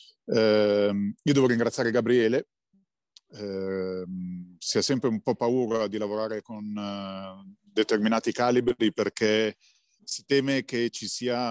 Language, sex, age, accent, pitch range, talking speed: Italian, male, 40-59, native, 95-120 Hz, 110 wpm